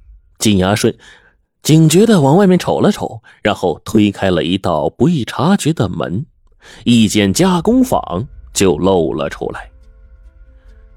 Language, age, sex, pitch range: Chinese, 30-49, male, 90-145 Hz